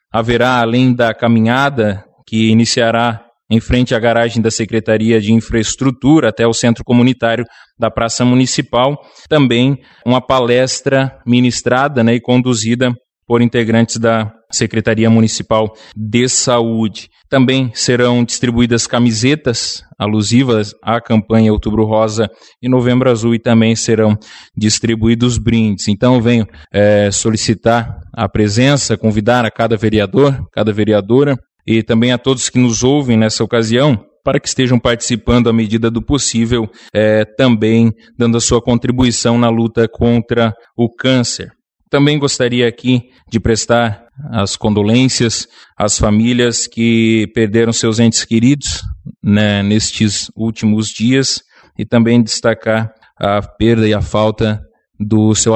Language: Portuguese